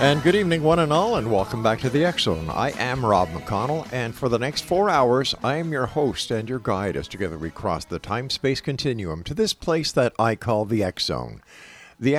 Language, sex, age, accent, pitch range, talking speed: English, male, 50-69, American, 95-130 Hz, 220 wpm